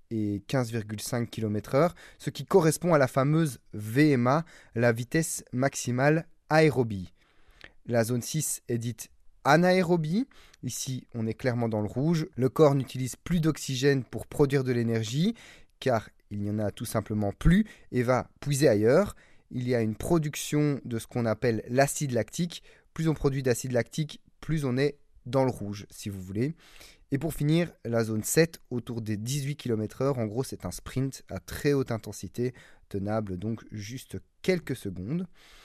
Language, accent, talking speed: French, French, 165 wpm